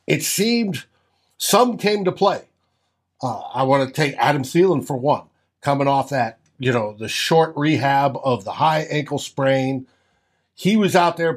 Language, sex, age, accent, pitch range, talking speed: English, male, 60-79, American, 130-180 Hz, 170 wpm